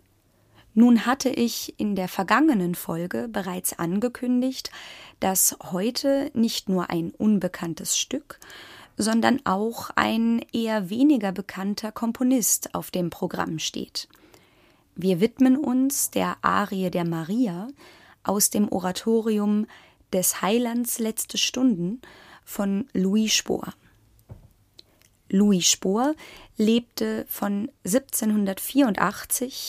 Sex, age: female, 20-39